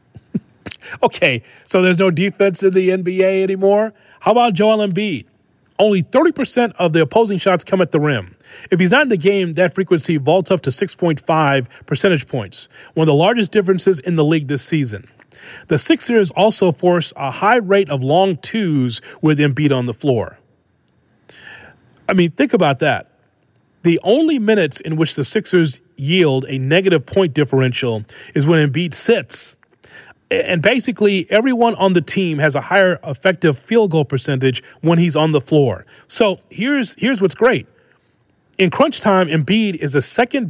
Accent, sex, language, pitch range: American, male, English, 150-205 Hz